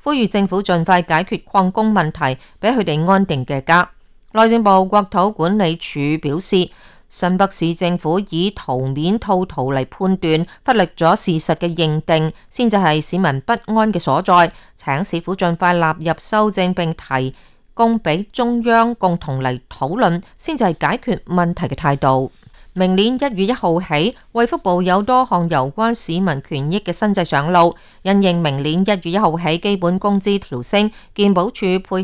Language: Chinese